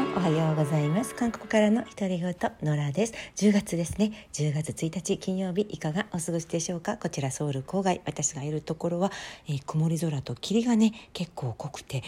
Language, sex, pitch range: Japanese, female, 135-185 Hz